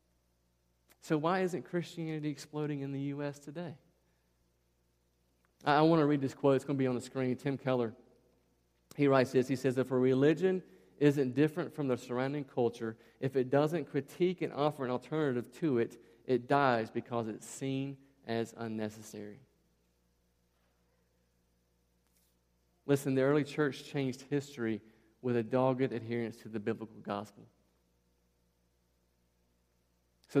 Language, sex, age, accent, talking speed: English, male, 40-59, American, 140 wpm